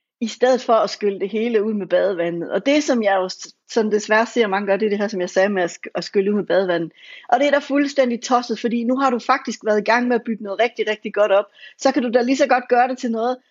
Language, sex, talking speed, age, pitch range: English, female, 295 wpm, 60-79, 210-265 Hz